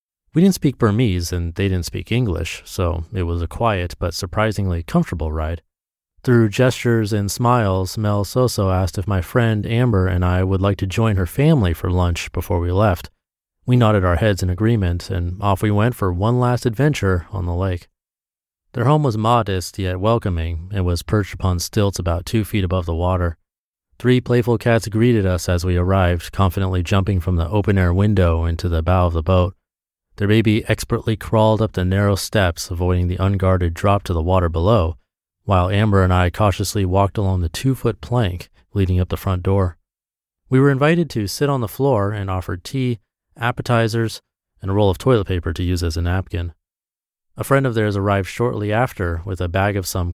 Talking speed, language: 195 wpm, English